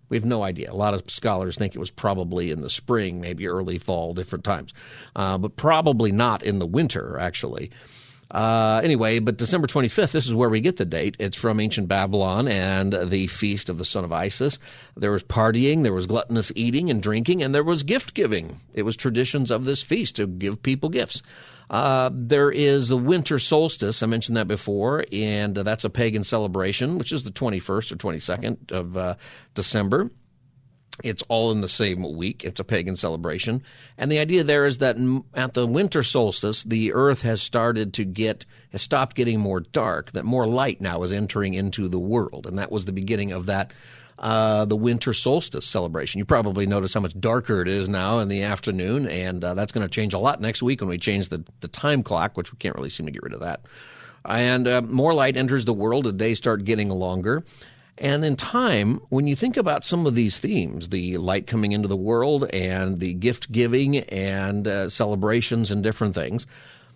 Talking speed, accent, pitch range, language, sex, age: 205 wpm, American, 95-125 Hz, English, male, 50-69